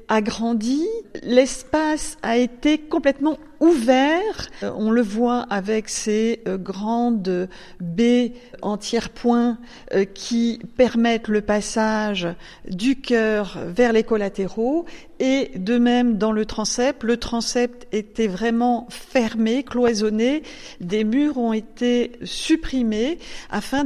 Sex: female